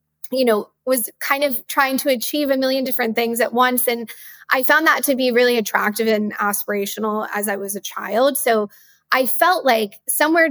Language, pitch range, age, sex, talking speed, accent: English, 220-260 Hz, 20-39, female, 195 wpm, American